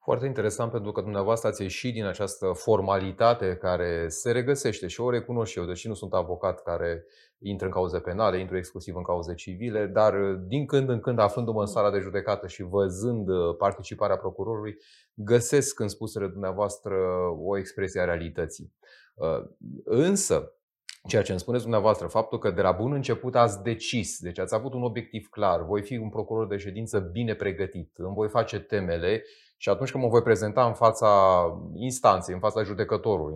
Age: 30-49